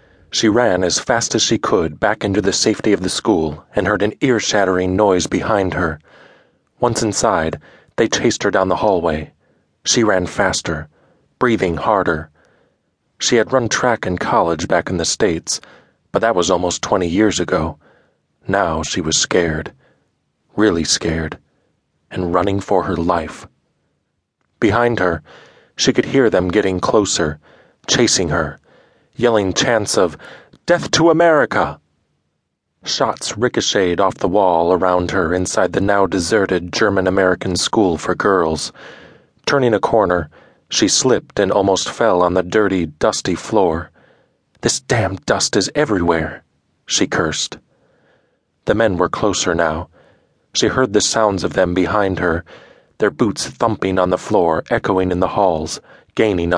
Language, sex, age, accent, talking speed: English, male, 30-49, American, 145 wpm